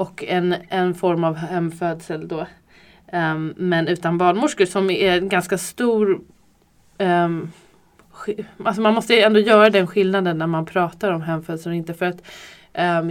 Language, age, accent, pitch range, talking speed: Swedish, 20-39, native, 160-185 Hz, 160 wpm